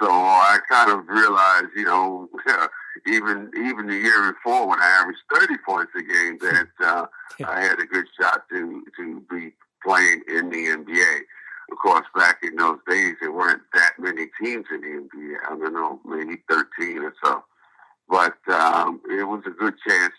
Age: 60-79